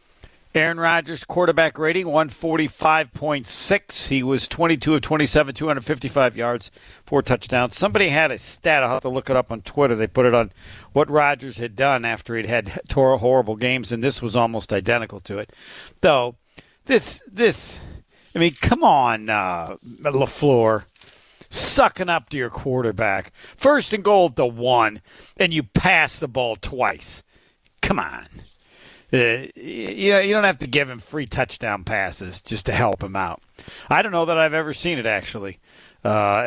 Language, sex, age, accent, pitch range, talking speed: English, male, 50-69, American, 120-165 Hz, 165 wpm